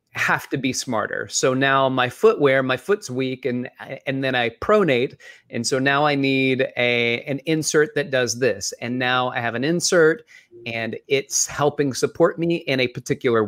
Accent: American